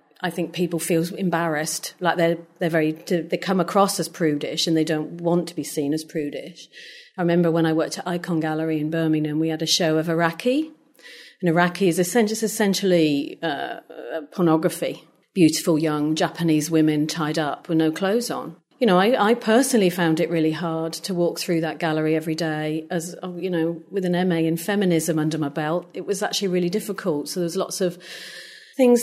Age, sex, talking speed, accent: 40-59, female, 190 wpm, British